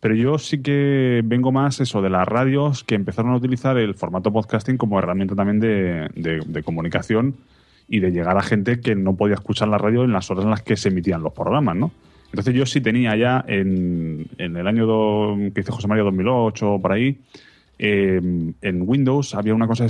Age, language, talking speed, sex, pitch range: 30-49, Spanish, 215 wpm, male, 95-120 Hz